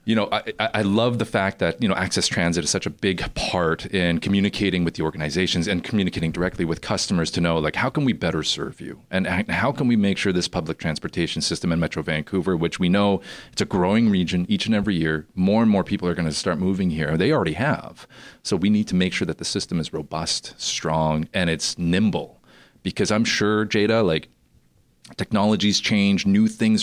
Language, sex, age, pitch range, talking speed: English, male, 30-49, 85-110 Hz, 215 wpm